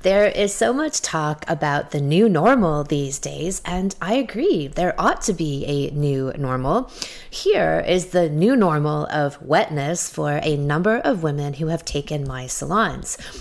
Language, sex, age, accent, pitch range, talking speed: English, female, 30-49, American, 155-215 Hz, 170 wpm